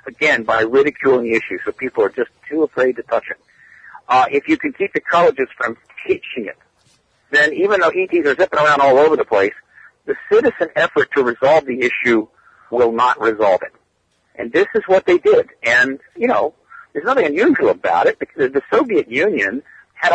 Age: 60-79